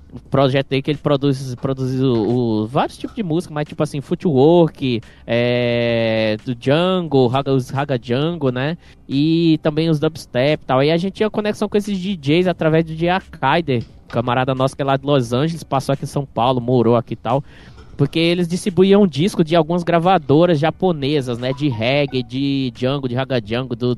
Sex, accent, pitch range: male, Brazilian, 130-175 Hz